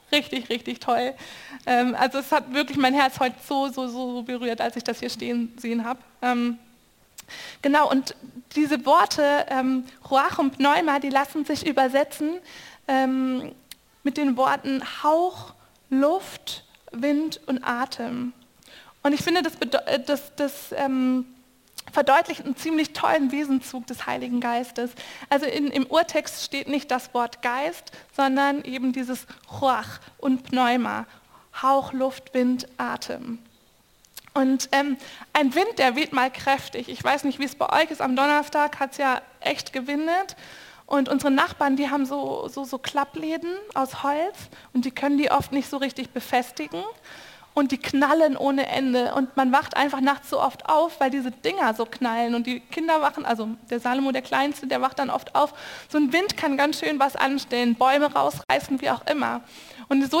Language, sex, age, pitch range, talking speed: German, female, 20-39, 255-295 Hz, 165 wpm